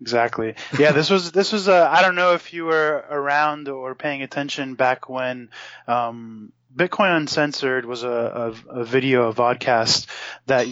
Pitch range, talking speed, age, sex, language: 120-145 Hz, 170 wpm, 20-39, male, English